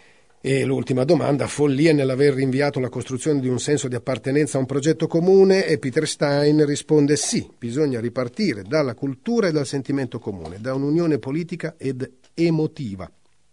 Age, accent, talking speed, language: 40-59, native, 155 wpm, Italian